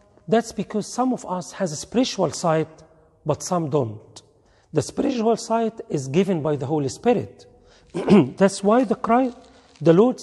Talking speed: 160 wpm